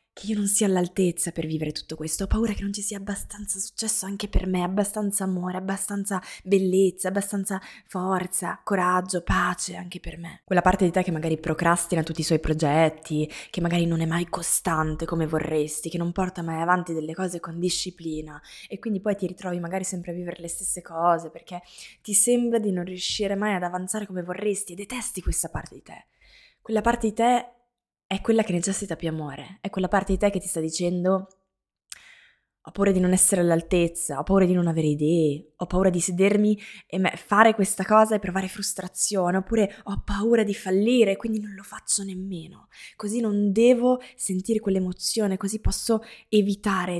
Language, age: Italian, 20-39